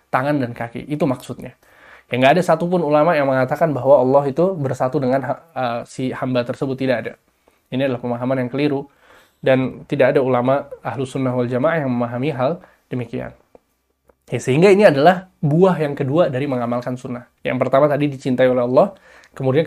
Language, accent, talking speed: Indonesian, native, 175 wpm